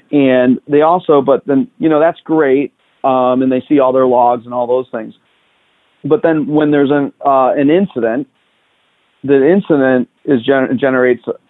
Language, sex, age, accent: English, male, 40-59, American